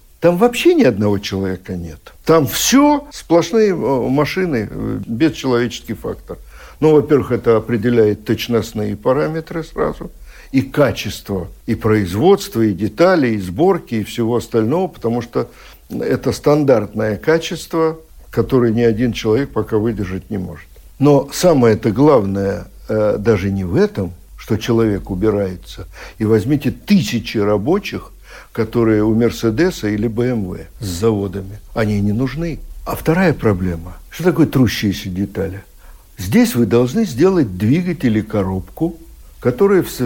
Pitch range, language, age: 105-155 Hz, Russian, 60-79